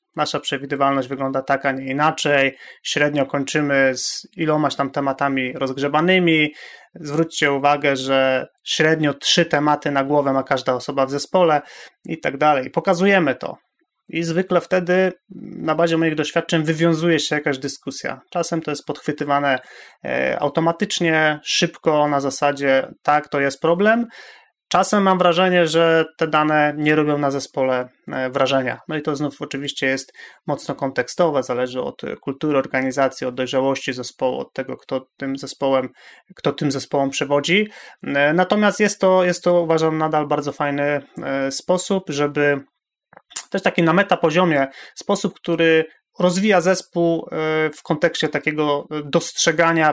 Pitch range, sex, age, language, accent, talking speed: 140-170 Hz, male, 30-49, Polish, native, 135 wpm